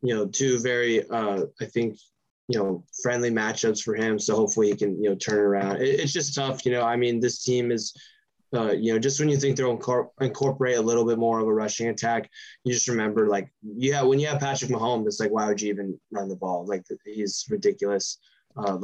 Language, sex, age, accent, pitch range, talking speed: English, male, 20-39, American, 110-135 Hz, 225 wpm